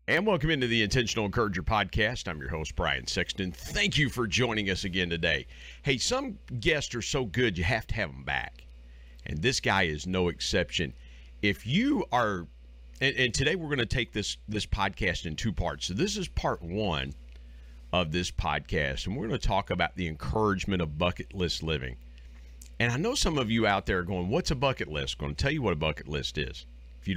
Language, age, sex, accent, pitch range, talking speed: English, 50-69, male, American, 70-105 Hz, 220 wpm